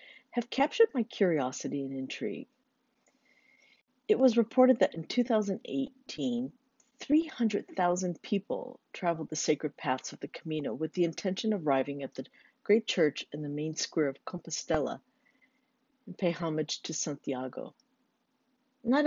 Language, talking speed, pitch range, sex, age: English, 130 wpm, 150-255 Hz, female, 50-69